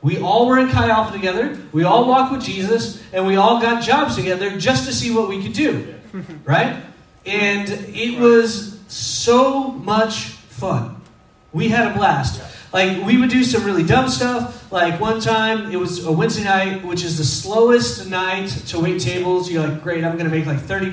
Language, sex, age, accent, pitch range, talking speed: English, male, 30-49, American, 165-230 Hz, 190 wpm